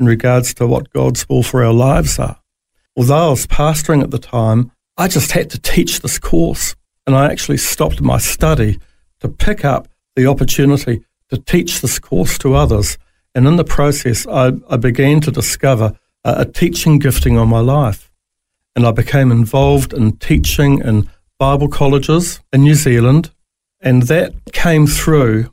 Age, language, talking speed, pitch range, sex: 60-79, English, 170 wpm, 115-140 Hz, male